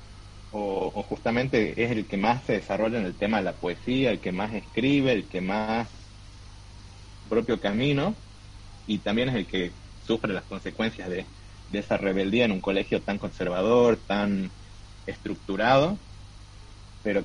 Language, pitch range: Spanish, 100-115 Hz